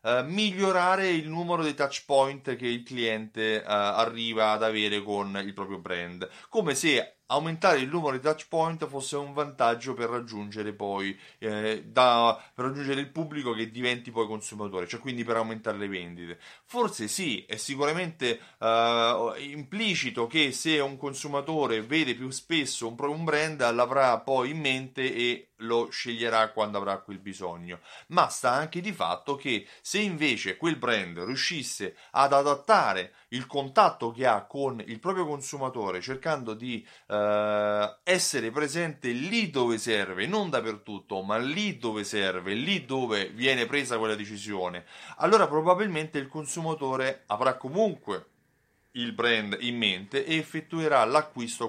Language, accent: Italian, native